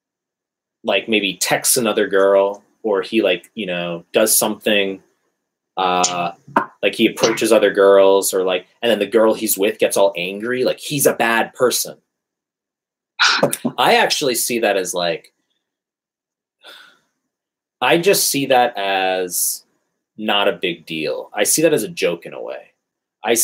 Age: 20-39